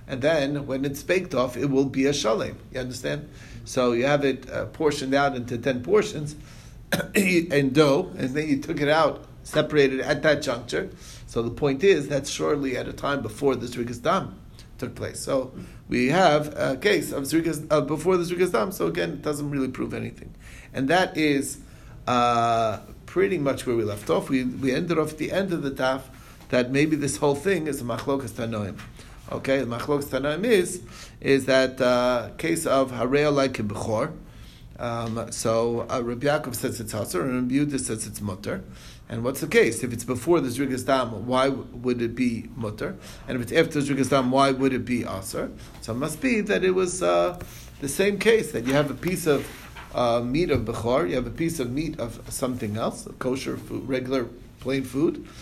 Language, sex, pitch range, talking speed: English, male, 120-145 Hz, 200 wpm